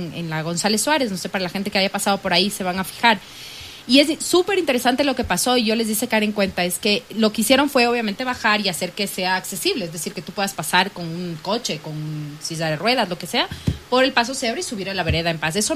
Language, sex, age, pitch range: English, female, 30-49, 190-255 Hz